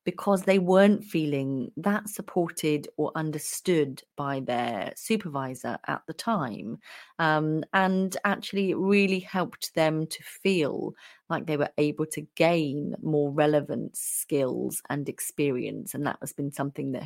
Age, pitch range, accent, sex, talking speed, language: 30-49, 150-200 Hz, British, female, 140 wpm, English